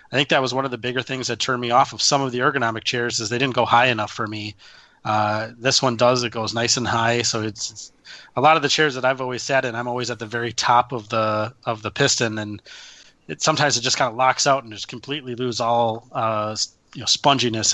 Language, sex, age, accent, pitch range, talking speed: English, male, 20-39, American, 115-130 Hz, 265 wpm